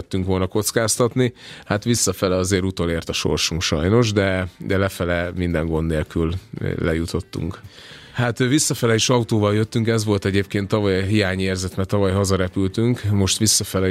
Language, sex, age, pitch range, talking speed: Hungarian, male, 30-49, 90-105 Hz, 140 wpm